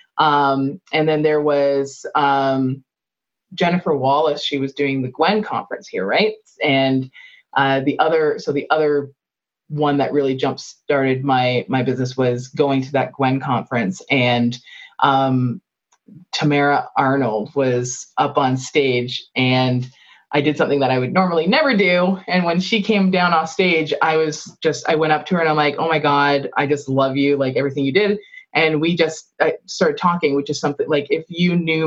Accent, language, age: American, English, 20-39